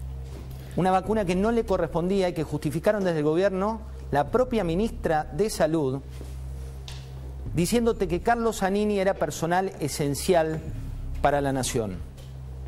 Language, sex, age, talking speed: Spanish, male, 40-59, 130 wpm